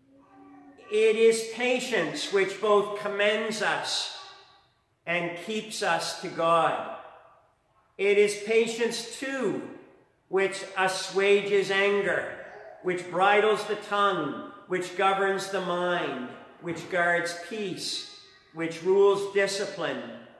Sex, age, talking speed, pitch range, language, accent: male, 50-69, 95 wpm, 170-210 Hz, English, American